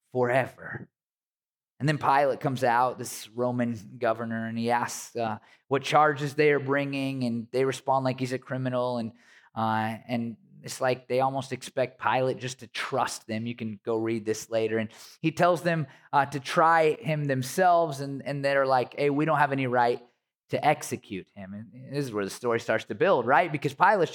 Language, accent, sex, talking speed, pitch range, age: English, American, male, 195 wpm, 115-150 Hz, 20-39